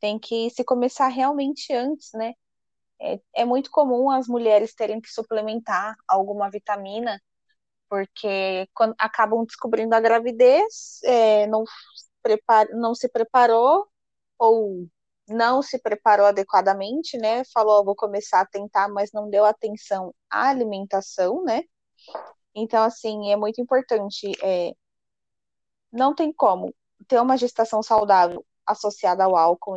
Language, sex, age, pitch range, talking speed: Portuguese, female, 10-29, 205-250 Hz, 120 wpm